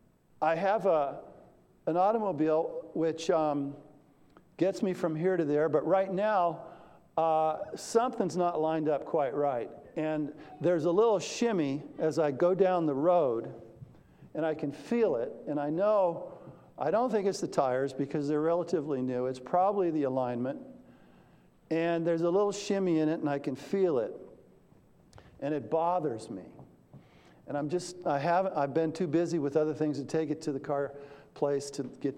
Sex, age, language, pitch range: male, 50-69, English, 145-175 Hz